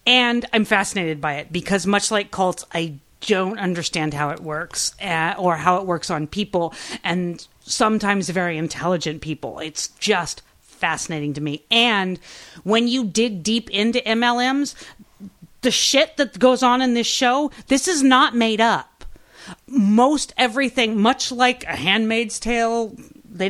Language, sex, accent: English, female, American